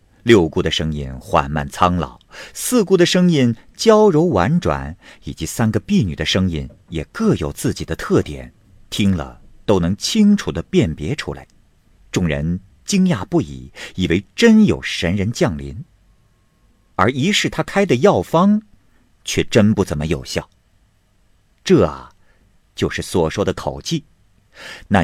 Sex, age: male, 50-69